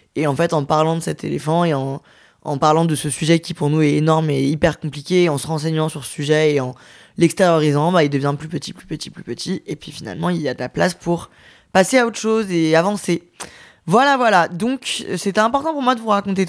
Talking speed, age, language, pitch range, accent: 240 wpm, 20-39, French, 155-190 Hz, French